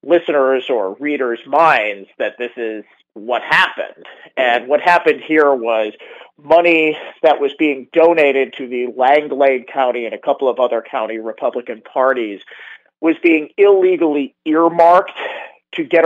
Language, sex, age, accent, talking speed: English, male, 40-59, American, 140 wpm